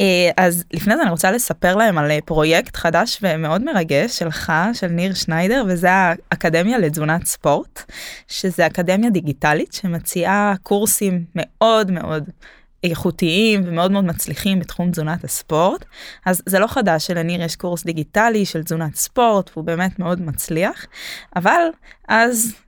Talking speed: 135 wpm